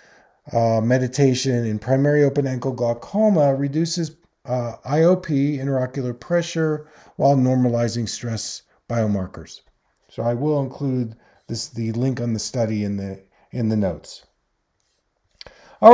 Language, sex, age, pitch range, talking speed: English, male, 40-59, 115-165 Hz, 120 wpm